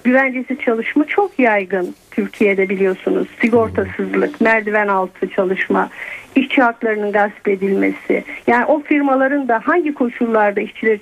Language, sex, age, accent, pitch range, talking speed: Turkish, female, 50-69, native, 230-305 Hz, 115 wpm